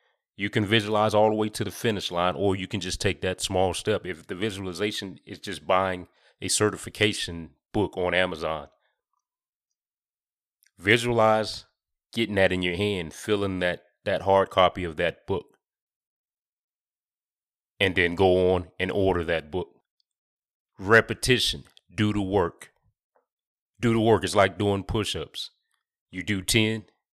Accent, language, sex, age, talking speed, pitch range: American, English, male, 30-49, 145 wpm, 90-110 Hz